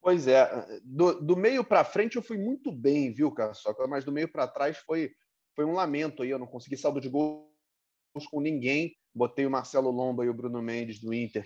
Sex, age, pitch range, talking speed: male, 30-49, 130-195 Hz, 215 wpm